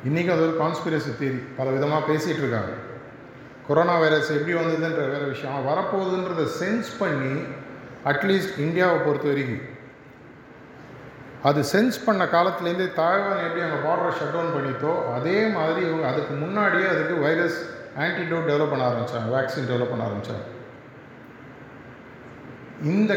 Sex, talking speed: male, 120 wpm